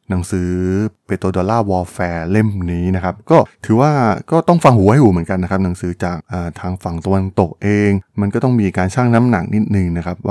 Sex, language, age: male, Thai, 20-39